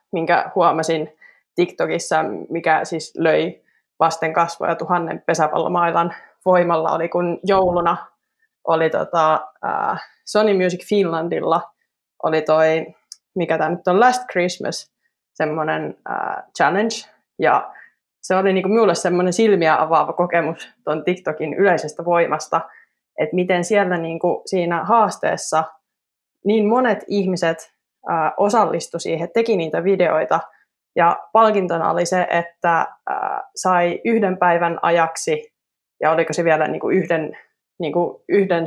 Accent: native